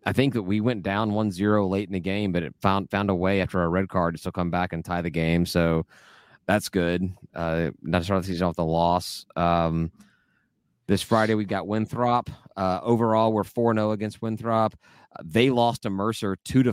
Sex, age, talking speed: male, 30-49, 210 wpm